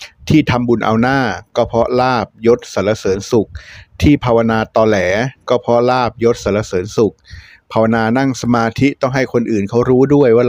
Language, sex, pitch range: Thai, male, 110-175 Hz